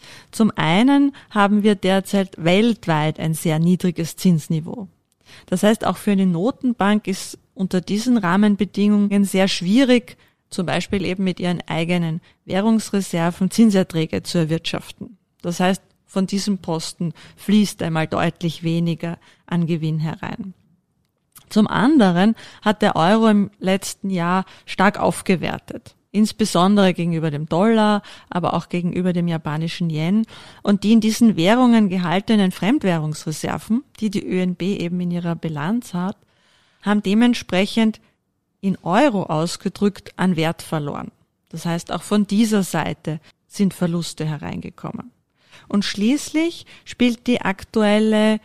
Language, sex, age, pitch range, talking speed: German, female, 30-49, 170-210 Hz, 125 wpm